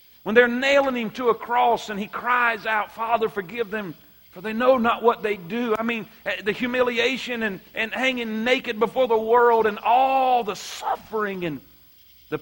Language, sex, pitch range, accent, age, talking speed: English, male, 185-255 Hz, American, 40-59, 185 wpm